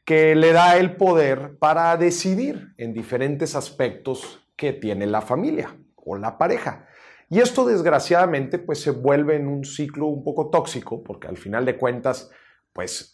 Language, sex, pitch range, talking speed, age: Spanish, male, 115-170 Hz, 160 wpm, 40-59